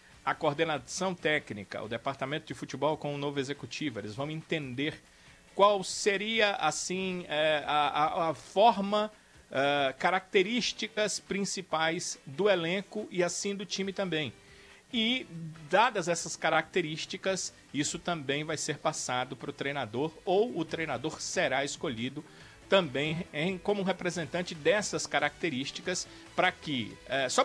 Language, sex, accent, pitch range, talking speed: Portuguese, male, Brazilian, 145-180 Hz, 120 wpm